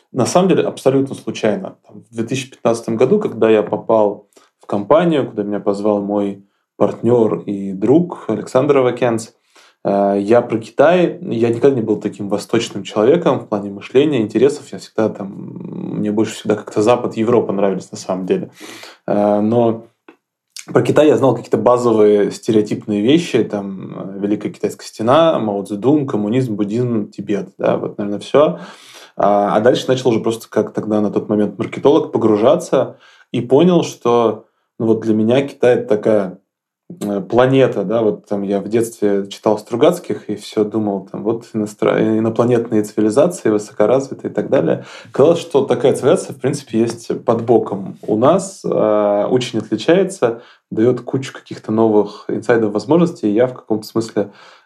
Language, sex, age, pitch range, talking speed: Russian, male, 20-39, 105-120 Hz, 150 wpm